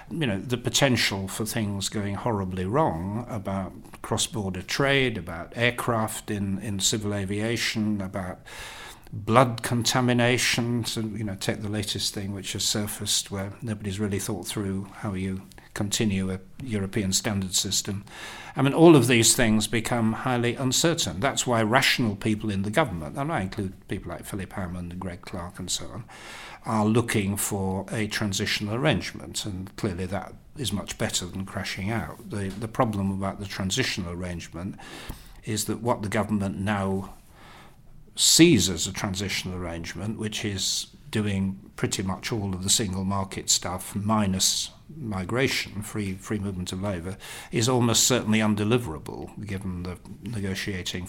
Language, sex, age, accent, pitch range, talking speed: English, male, 60-79, British, 95-115 Hz, 150 wpm